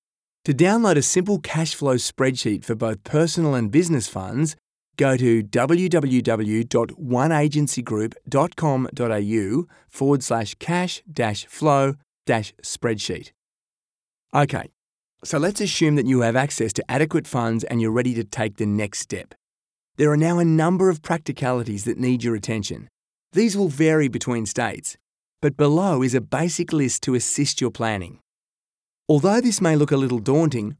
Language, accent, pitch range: English, Australian, 115-155 Hz